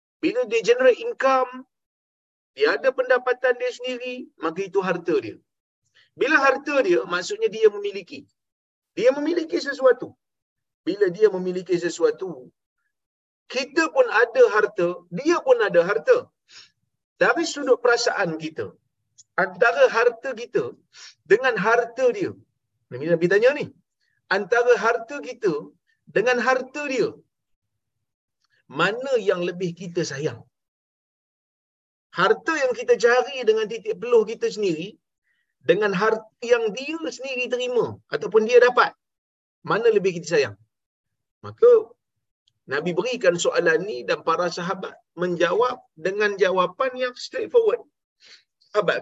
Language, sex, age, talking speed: Malayalam, male, 40-59, 115 wpm